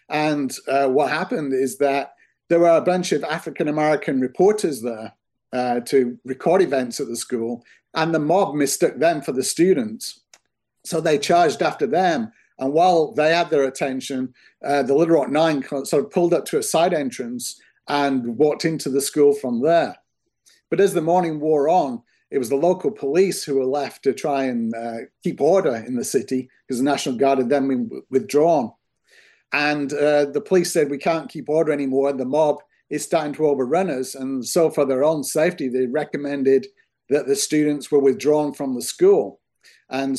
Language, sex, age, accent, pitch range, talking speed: English, male, 50-69, British, 135-165 Hz, 190 wpm